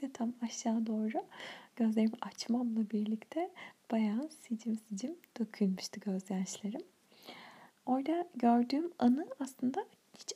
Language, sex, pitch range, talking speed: Turkish, female, 210-260 Hz, 95 wpm